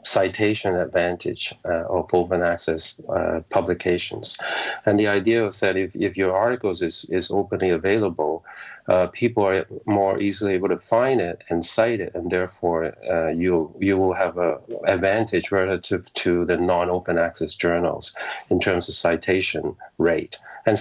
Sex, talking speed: male, 160 wpm